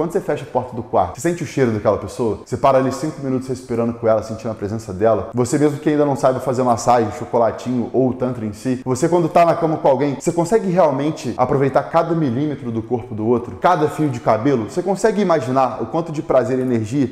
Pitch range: 125-165 Hz